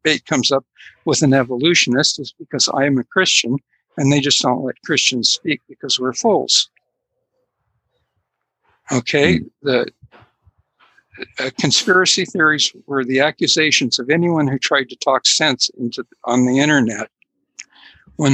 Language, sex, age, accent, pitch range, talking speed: English, male, 60-79, American, 130-165 Hz, 135 wpm